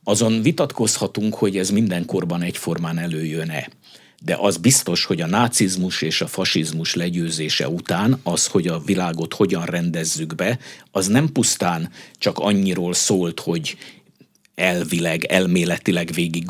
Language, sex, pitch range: Hungarian, male, 85-115 Hz